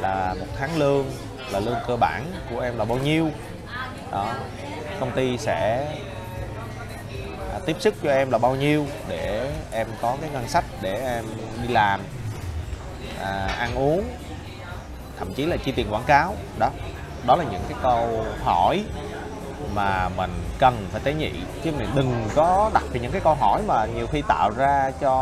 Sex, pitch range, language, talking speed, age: male, 95-135 Hz, Vietnamese, 170 wpm, 20-39